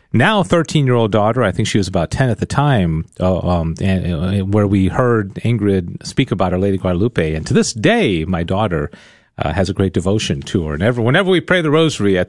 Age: 40-59